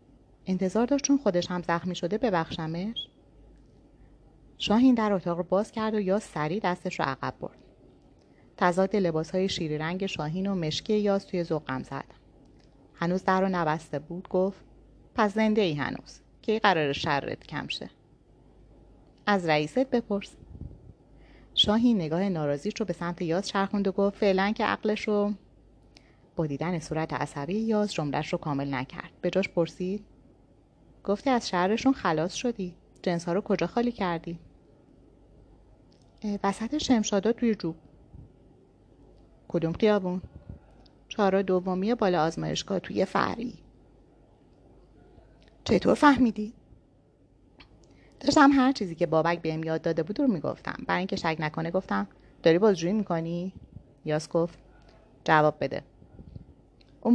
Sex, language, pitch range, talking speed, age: female, Persian, 165-210 Hz, 130 wpm, 30-49